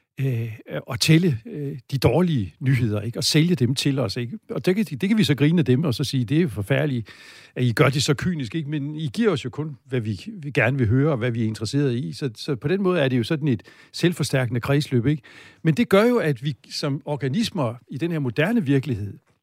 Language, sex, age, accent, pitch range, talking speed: Danish, male, 60-79, native, 125-155 Hz, 245 wpm